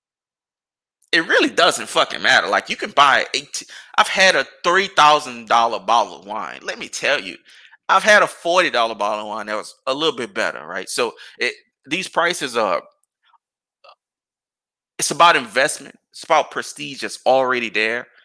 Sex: male